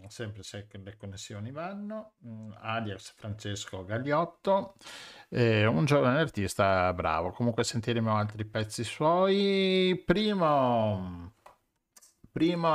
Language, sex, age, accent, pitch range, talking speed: Italian, male, 50-69, native, 100-125 Hz, 95 wpm